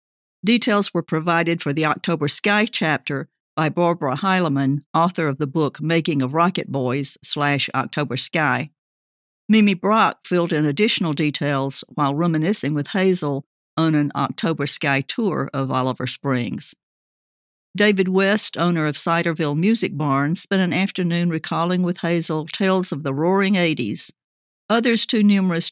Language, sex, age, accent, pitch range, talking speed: English, female, 60-79, American, 145-180 Hz, 140 wpm